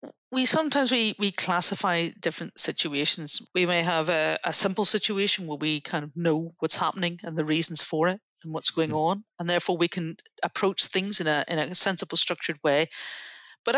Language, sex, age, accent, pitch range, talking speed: English, female, 40-59, British, 165-200 Hz, 190 wpm